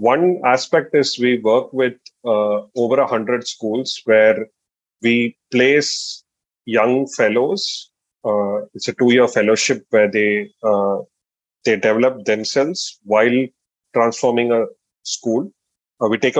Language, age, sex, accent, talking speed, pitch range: Hindi, 30-49, male, native, 125 wpm, 110-125 Hz